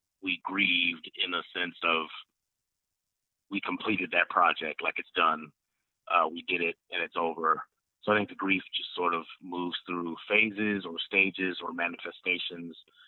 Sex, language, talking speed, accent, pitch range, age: male, English, 160 wpm, American, 85-100 Hz, 30-49